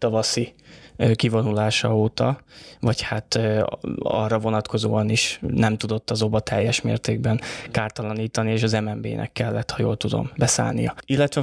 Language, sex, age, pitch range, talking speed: Hungarian, male, 20-39, 110-125 Hz, 125 wpm